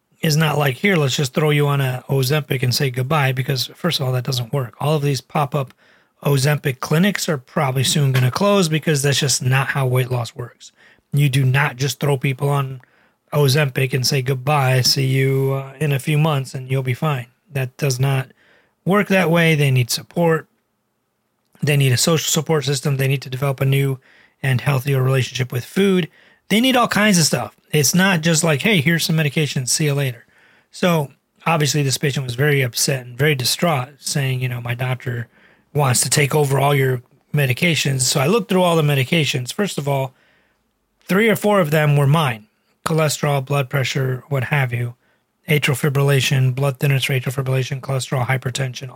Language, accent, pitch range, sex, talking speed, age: English, American, 130-160 Hz, male, 195 wpm, 30-49